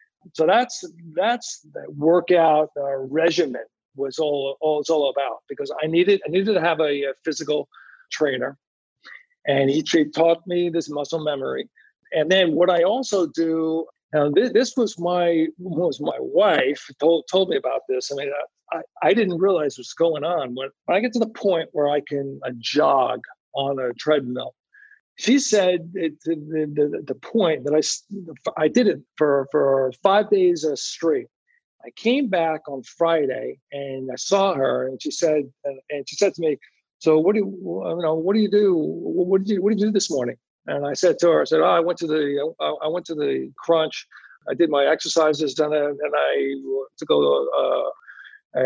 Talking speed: 190 wpm